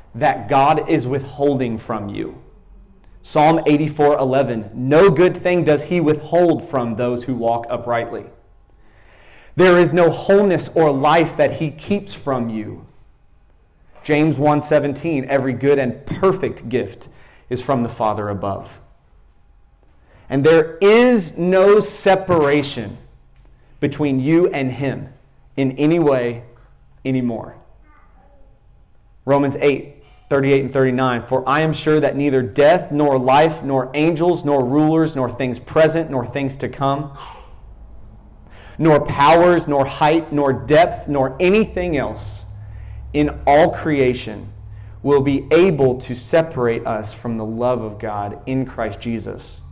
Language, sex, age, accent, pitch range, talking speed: English, male, 30-49, American, 110-150 Hz, 130 wpm